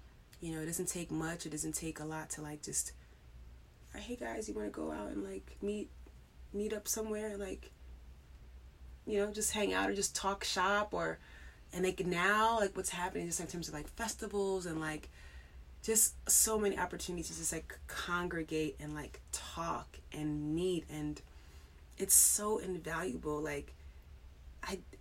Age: 20-39